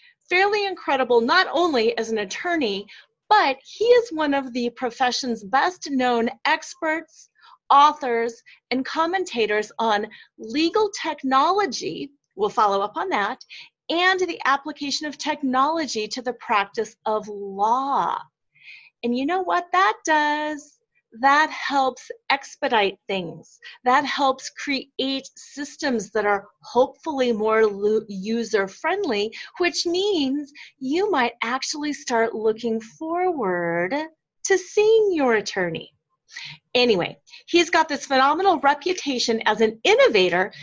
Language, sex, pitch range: English, female, 225-340 Hz